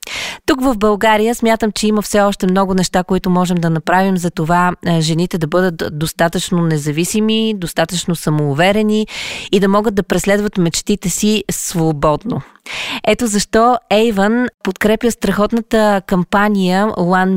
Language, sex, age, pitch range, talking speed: Bulgarian, female, 20-39, 175-225 Hz, 130 wpm